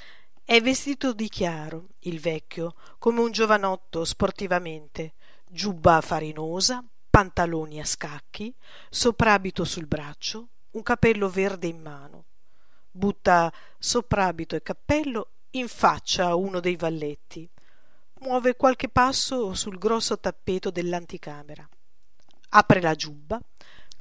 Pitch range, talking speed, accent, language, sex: 160-220 Hz, 105 wpm, native, Italian, female